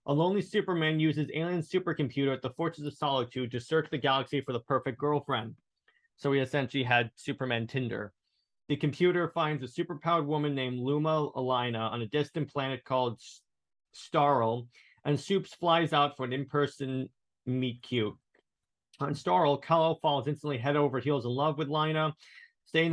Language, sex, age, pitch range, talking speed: English, male, 30-49, 125-155 Hz, 160 wpm